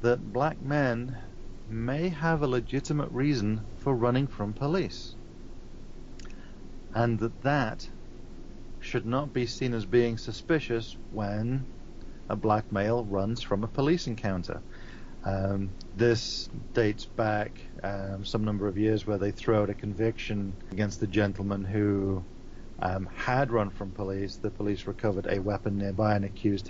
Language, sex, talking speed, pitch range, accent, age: English, male, 140 wpm, 95-115 Hz, British, 40-59